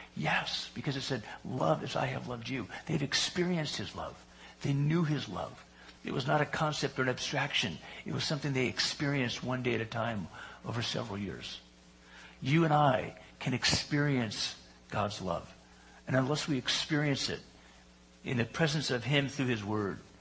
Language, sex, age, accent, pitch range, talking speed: English, male, 60-79, American, 95-145 Hz, 175 wpm